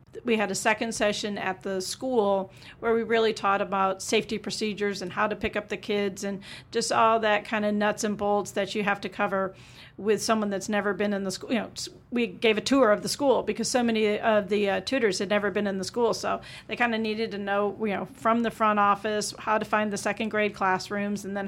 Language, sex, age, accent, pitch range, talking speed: English, female, 40-59, American, 195-220 Hz, 245 wpm